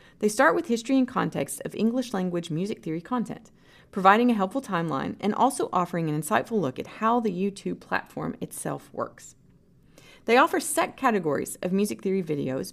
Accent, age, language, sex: American, 30-49, English, female